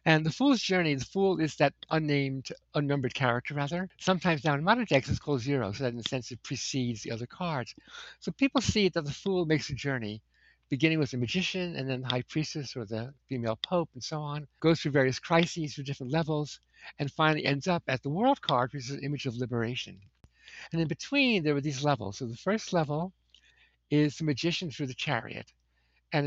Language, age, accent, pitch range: English, 60-79, American, 130-165 Hz